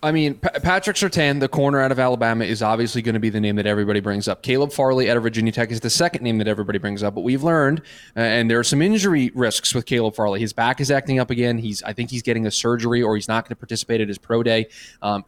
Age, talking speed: 20-39, 275 wpm